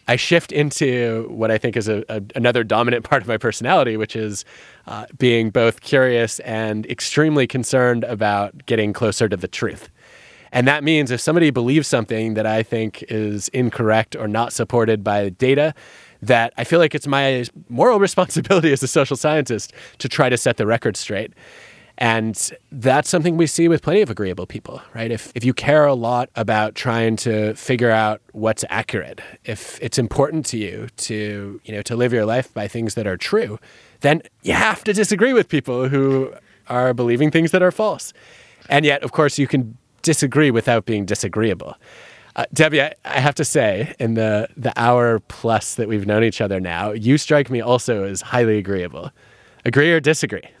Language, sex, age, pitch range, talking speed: English, male, 20-39, 110-140 Hz, 185 wpm